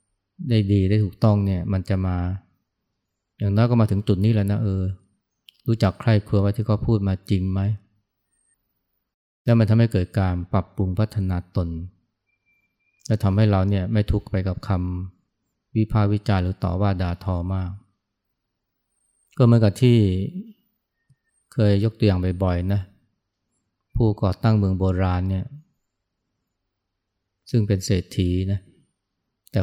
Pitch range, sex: 95-110 Hz, male